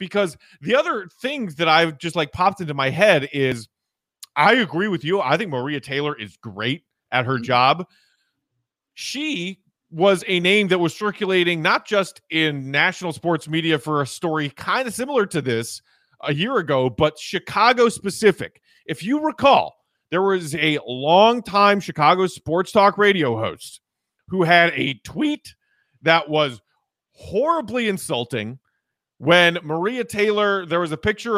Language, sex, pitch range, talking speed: English, male, 155-205 Hz, 155 wpm